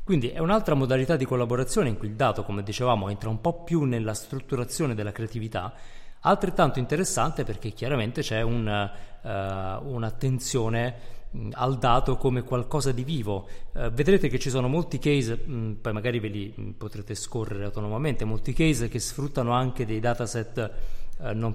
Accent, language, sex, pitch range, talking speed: native, Italian, male, 110-130 Hz, 160 wpm